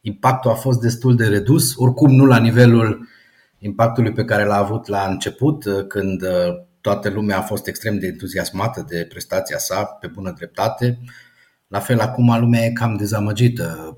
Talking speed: 165 wpm